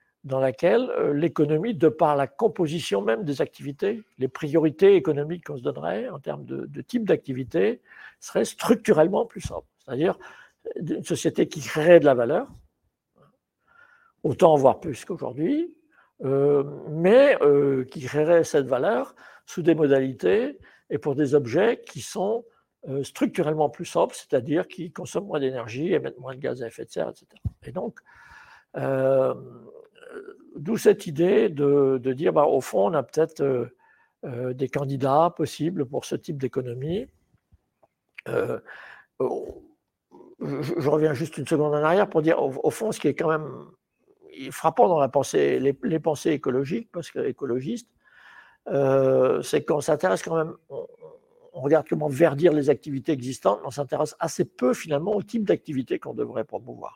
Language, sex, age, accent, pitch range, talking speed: French, male, 60-79, French, 140-200 Hz, 160 wpm